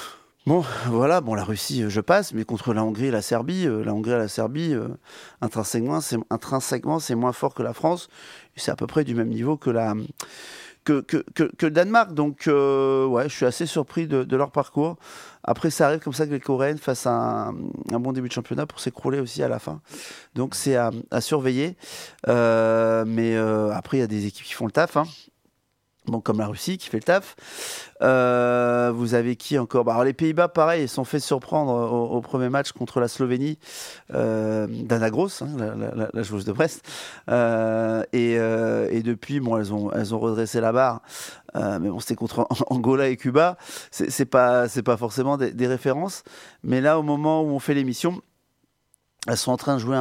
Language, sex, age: French, male, 30-49